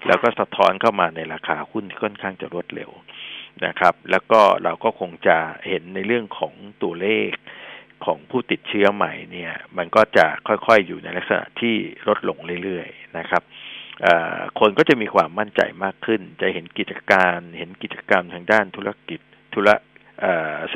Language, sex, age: Thai, male, 60-79